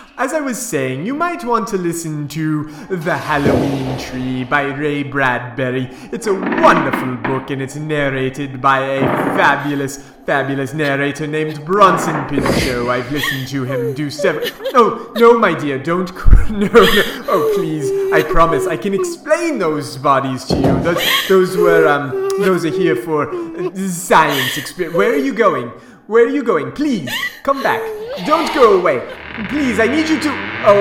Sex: male